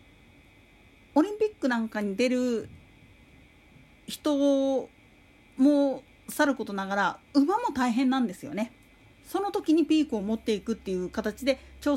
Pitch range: 200-300 Hz